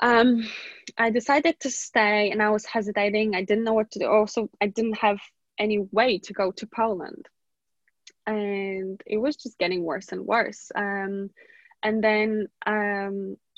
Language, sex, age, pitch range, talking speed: English, female, 10-29, 200-220 Hz, 165 wpm